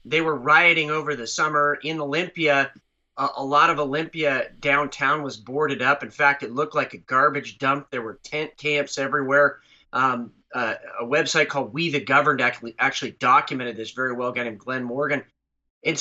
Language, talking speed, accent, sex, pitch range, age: English, 185 wpm, American, male, 135-160 Hz, 30-49